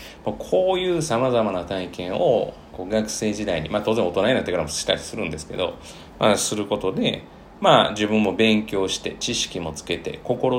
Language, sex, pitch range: Japanese, male, 90-130 Hz